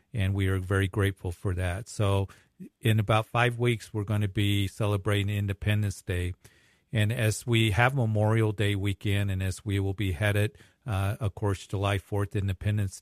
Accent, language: American, English